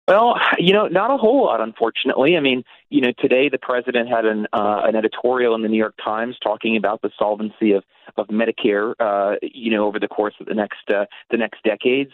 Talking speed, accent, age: 225 wpm, American, 30-49